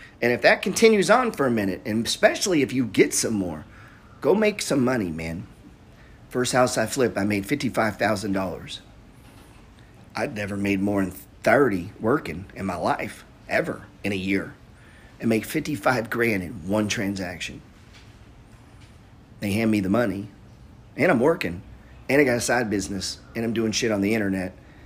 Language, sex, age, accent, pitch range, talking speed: English, male, 40-59, American, 100-125 Hz, 165 wpm